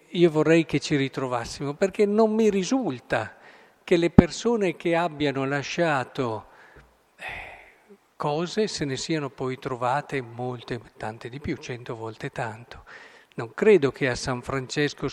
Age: 50-69